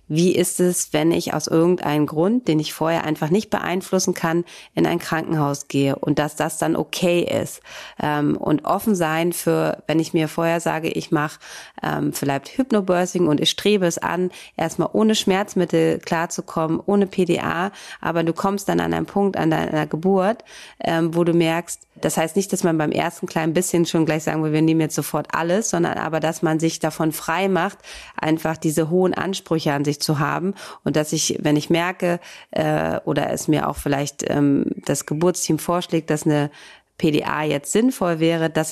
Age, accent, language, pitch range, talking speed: 30-49, German, German, 150-175 Hz, 180 wpm